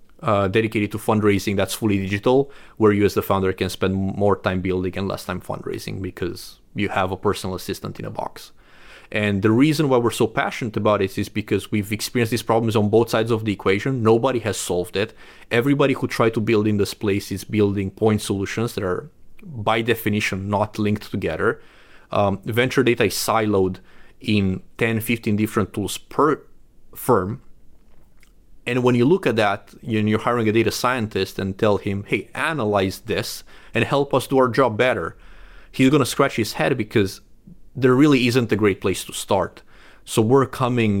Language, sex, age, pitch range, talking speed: English, male, 30-49, 95-115 Hz, 190 wpm